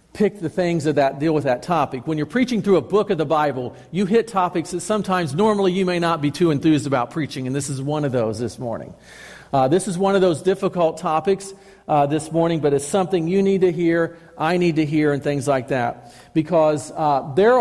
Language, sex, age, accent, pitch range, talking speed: English, male, 50-69, American, 150-195 Hz, 240 wpm